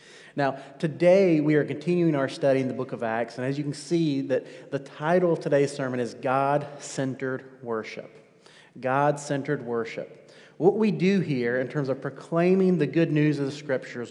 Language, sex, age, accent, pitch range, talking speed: English, male, 30-49, American, 145-185 Hz, 180 wpm